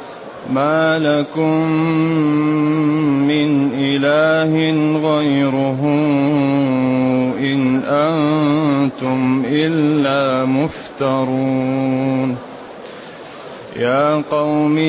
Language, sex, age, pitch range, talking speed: Arabic, male, 30-49, 140-155 Hz, 45 wpm